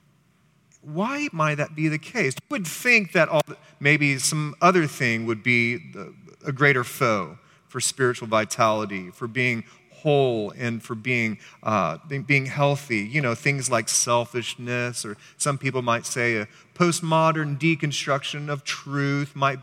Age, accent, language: 30-49, American, English